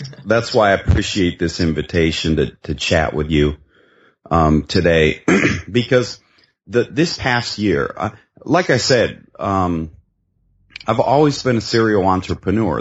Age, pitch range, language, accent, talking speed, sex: 30-49, 85-110 Hz, English, American, 135 wpm, male